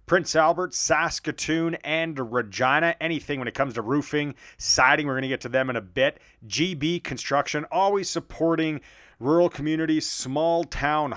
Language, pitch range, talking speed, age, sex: English, 125-145 Hz, 150 wpm, 40-59, male